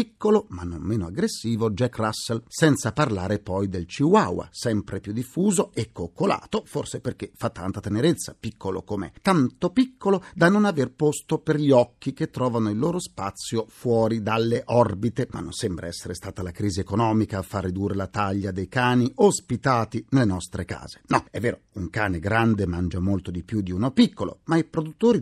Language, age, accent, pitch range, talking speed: Italian, 40-59, native, 95-145 Hz, 185 wpm